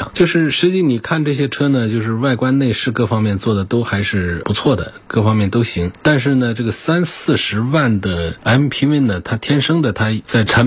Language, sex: Chinese, male